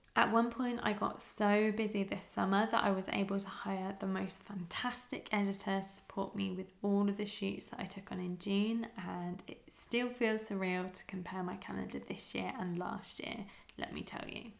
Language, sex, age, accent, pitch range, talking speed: English, female, 20-39, British, 185-215 Hz, 210 wpm